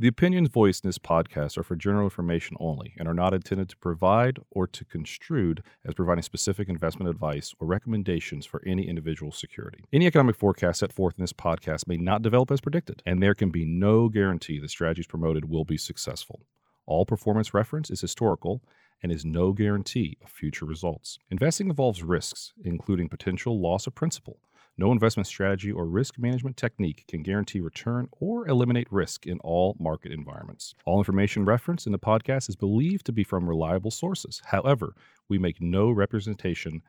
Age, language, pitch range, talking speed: 40-59, English, 90-120 Hz, 180 wpm